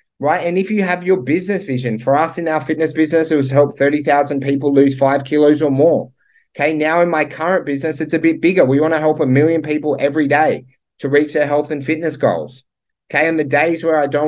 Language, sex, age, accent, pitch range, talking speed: English, male, 30-49, Australian, 140-160 Hz, 240 wpm